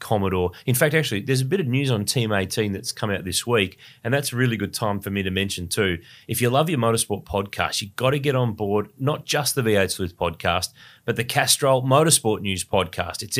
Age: 30-49